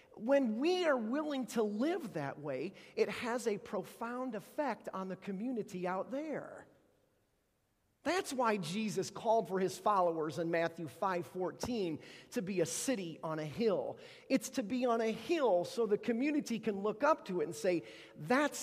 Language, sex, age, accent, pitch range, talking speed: English, male, 40-59, American, 185-250 Hz, 170 wpm